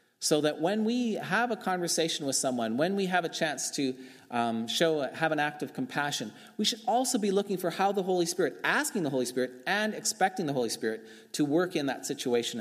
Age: 30-49